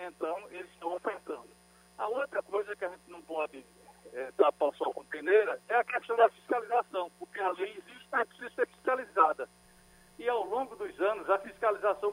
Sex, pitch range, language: male, 150-225 Hz, Portuguese